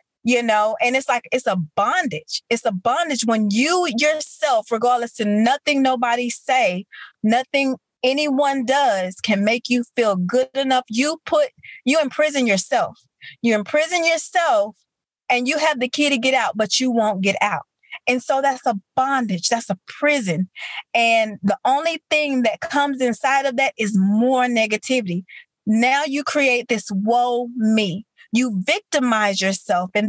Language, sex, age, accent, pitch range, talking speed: English, female, 30-49, American, 210-275 Hz, 160 wpm